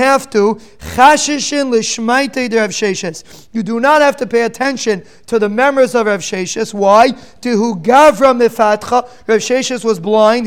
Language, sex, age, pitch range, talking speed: English, male, 30-49, 220-265 Hz, 115 wpm